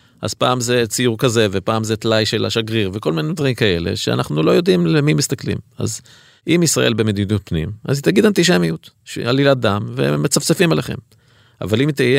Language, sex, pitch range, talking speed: Hebrew, male, 95-125 Hz, 175 wpm